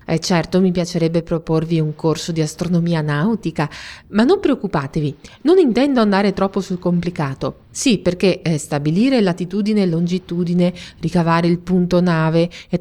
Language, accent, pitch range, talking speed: Italian, native, 165-215 Hz, 140 wpm